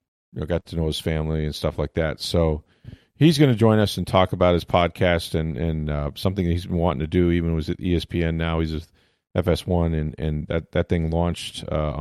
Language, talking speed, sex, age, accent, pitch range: English, 245 wpm, male, 40-59, American, 80-100 Hz